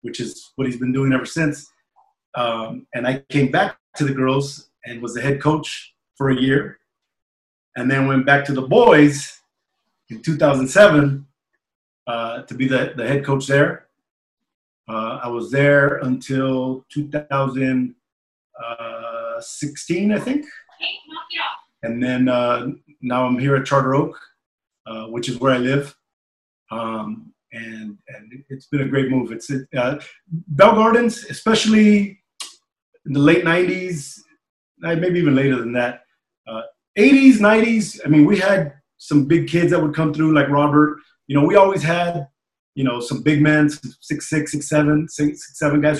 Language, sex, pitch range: English, male, 130-165 Hz